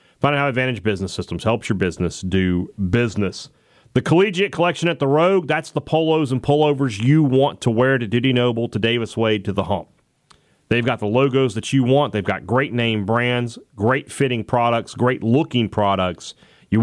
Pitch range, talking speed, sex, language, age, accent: 105-135 Hz, 195 wpm, male, English, 40-59, American